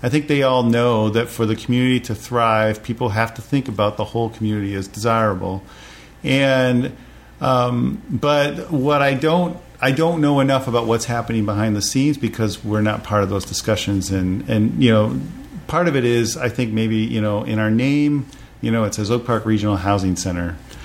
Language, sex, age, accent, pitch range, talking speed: English, male, 40-59, American, 105-130 Hz, 200 wpm